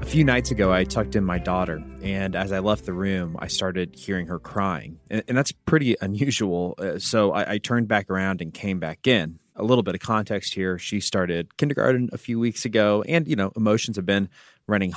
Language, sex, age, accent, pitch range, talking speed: English, male, 30-49, American, 95-125 Hz, 215 wpm